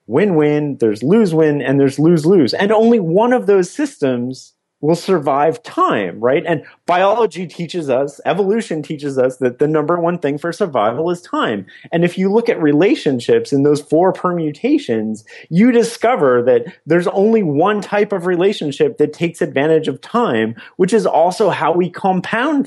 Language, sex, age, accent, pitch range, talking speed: English, male, 30-49, American, 150-200 Hz, 165 wpm